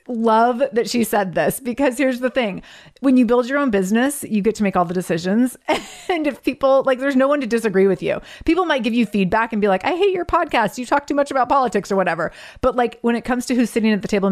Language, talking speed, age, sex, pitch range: English, 270 wpm, 30-49, female, 190-240 Hz